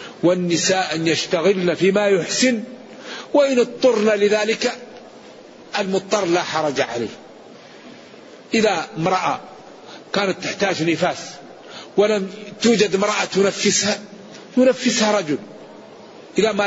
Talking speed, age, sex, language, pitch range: 90 wpm, 50-69, male, Arabic, 185-220 Hz